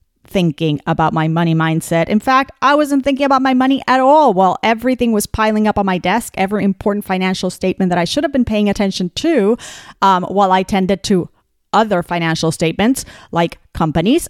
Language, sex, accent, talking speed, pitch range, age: English, female, American, 190 wpm, 180-260 Hz, 40-59